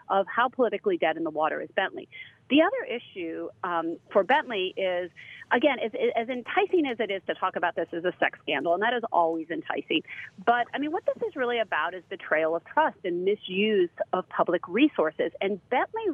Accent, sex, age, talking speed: American, female, 40-59, 200 wpm